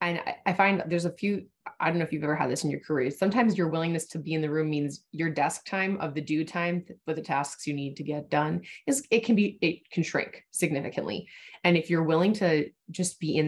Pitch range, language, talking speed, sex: 150-185 Hz, English, 255 wpm, female